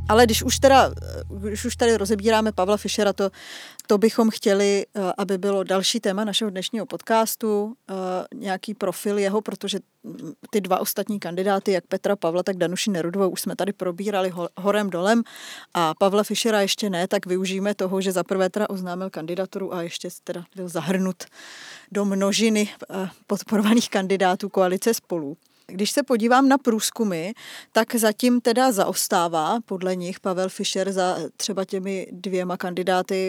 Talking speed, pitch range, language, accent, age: 155 wpm, 185-210 Hz, Czech, native, 20-39